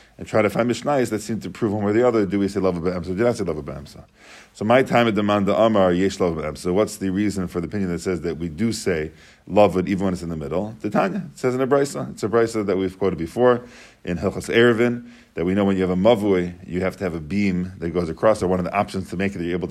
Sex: male